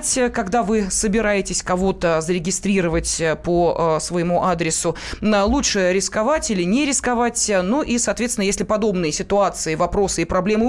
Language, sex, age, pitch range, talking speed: Russian, female, 20-39, 180-230 Hz, 135 wpm